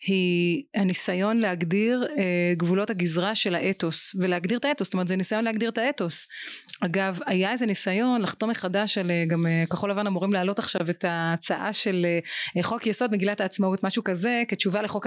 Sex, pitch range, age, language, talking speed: female, 190-255 Hz, 30-49, Hebrew, 165 wpm